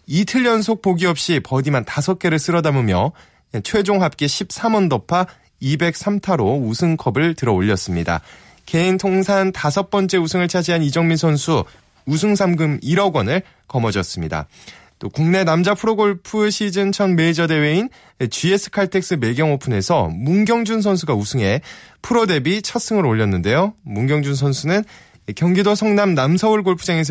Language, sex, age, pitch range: Korean, male, 20-39, 120-195 Hz